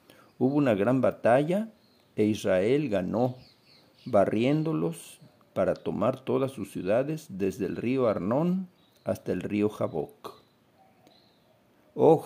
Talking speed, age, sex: 110 wpm, 60-79, male